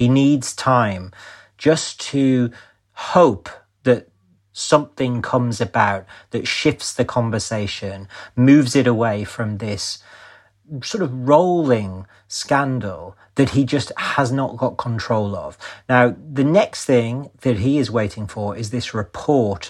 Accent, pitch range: British, 100-130 Hz